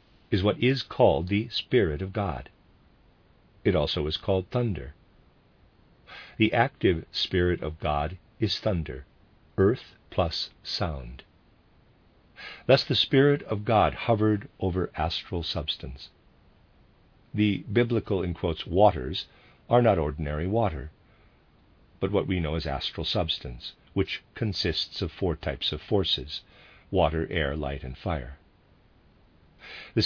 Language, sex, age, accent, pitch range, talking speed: English, male, 50-69, American, 80-110 Hz, 120 wpm